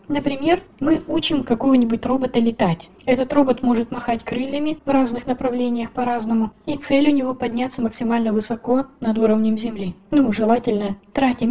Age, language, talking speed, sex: 20-39, Russian, 145 wpm, female